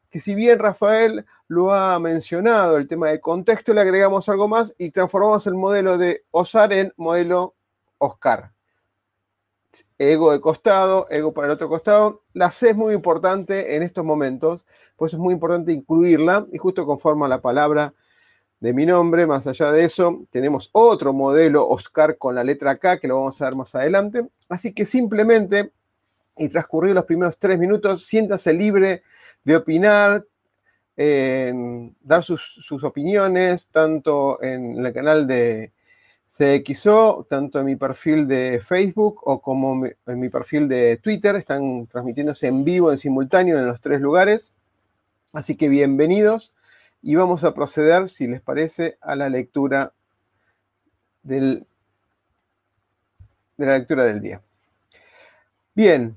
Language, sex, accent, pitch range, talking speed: Spanish, male, Argentinian, 130-185 Hz, 145 wpm